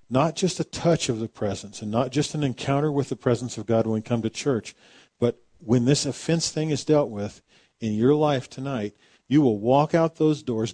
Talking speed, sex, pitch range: 225 wpm, male, 100-130 Hz